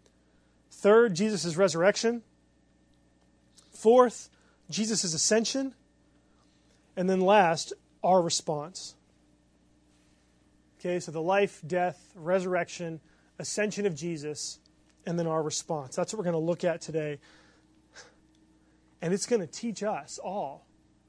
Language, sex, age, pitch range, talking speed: English, male, 30-49, 155-200 Hz, 110 wpm